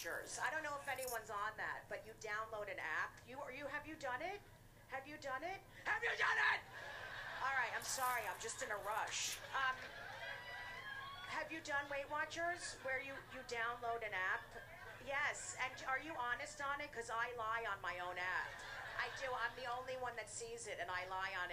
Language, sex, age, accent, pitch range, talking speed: English, female, 40-59, American, 185-275 Hz, 210 wpm